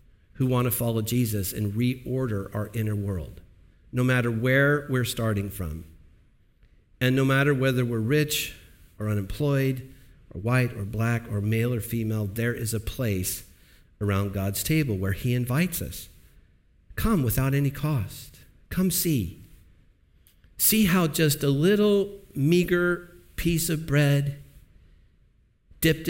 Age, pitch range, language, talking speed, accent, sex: 50-69, 95-140 Hz, English, 135 wpm, American, male